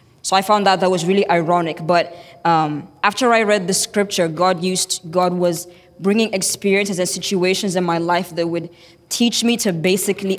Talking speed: 185 wpm